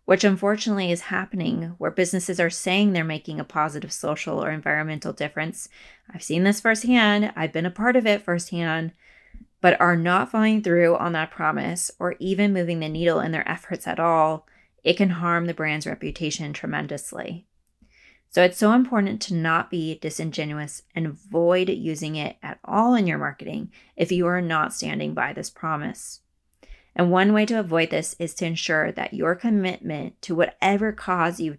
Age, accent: 20-39, American